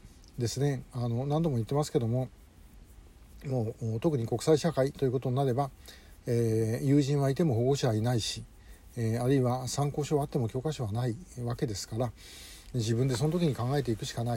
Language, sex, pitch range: Japanese, male, 115-150 Hz